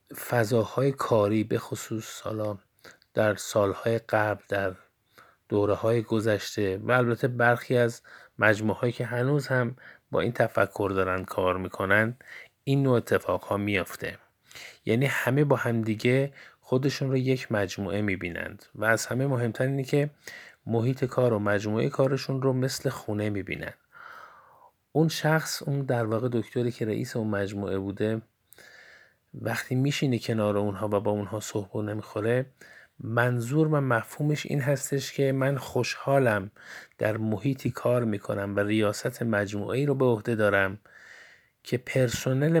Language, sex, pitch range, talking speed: Persian, male, 105-130 Hz, 135 wpm